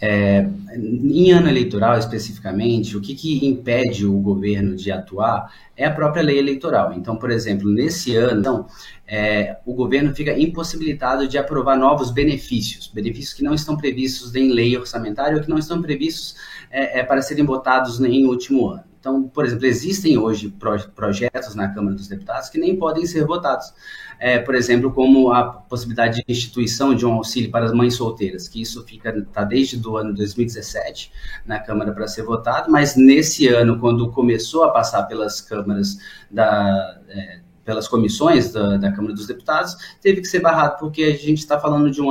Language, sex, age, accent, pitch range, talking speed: Portuguese, male, 20-39, Brazilian, 105-140 Hz, 170 wpm